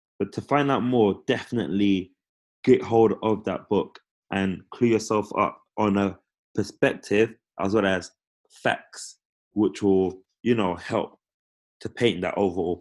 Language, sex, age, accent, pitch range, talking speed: English, male, 20-39, British, 95-115 Hz, 145 wpm